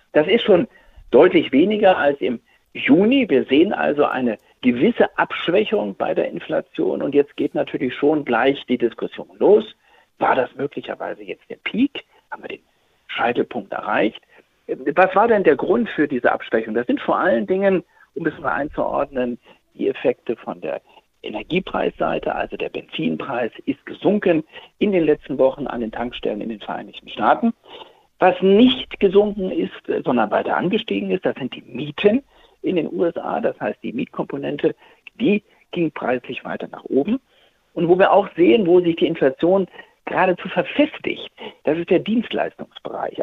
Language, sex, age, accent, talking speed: German, male, 60-79, German, 160 wpm